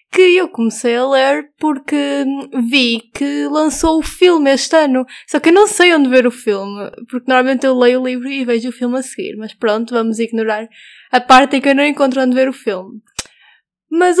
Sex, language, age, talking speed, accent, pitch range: female, Portuguese, 20-39, 210 wpm, Brazilian, 235-290 Hz